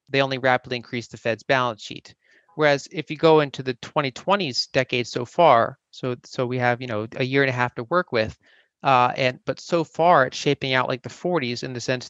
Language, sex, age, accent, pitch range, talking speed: English, male, 30-49, American, 125-145 Hz, 230 wpm